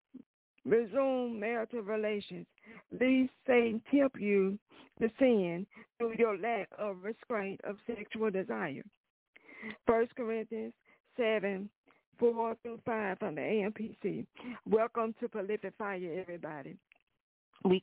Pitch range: 200-235 Hz